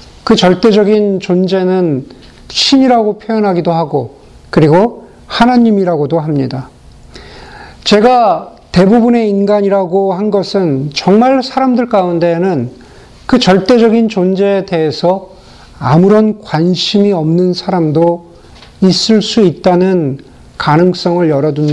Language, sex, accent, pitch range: Korean, male, native, 170-225 Hz